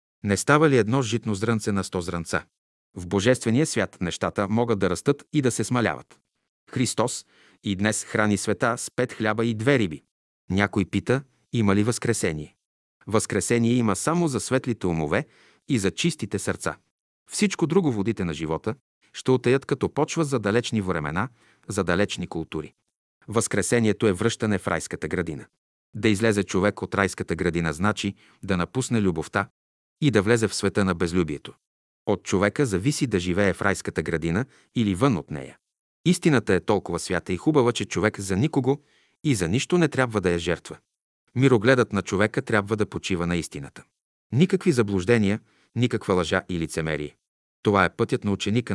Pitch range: 90-125 Hz